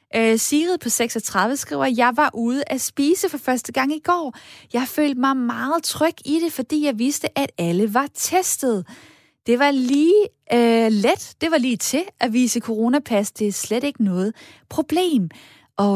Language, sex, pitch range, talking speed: Danish, female, 210-275 Hz, 185 wpm